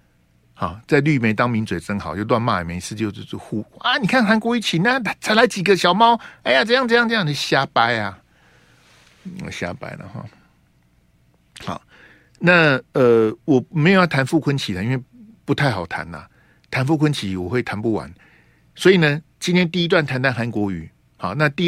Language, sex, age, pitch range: Chinese, male, 50-69, 100-155 Hz